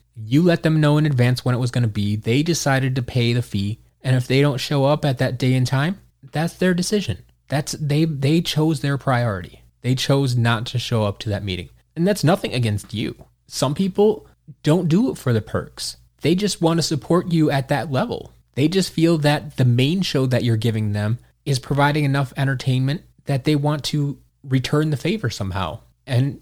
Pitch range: 115-150 Hz